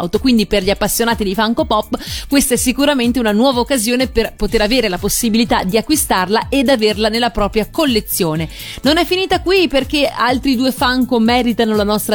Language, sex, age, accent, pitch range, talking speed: Italian, female, 30-49, native, 220-295 Hz, 180 wpm